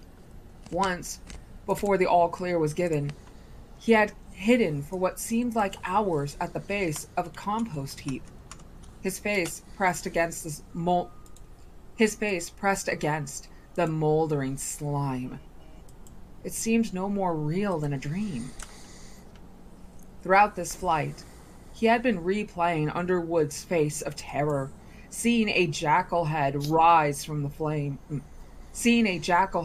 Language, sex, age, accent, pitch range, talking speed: English, female, 20-39, American, 145-195 Hz, 130 wpm